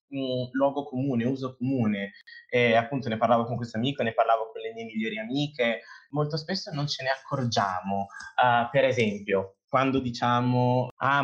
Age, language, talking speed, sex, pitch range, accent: 20-39, Italian, 165 wpm, male, 110-130 Hz, native